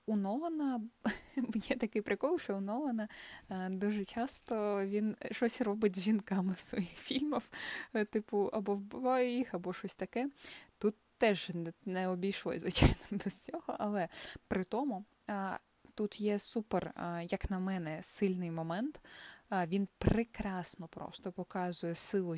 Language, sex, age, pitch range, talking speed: Ukrainian, female, 20-39, 185-230 Hz, 130 wpm